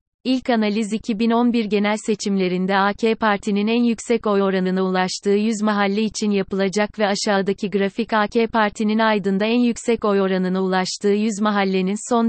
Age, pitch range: 30-49, 195-220 Hz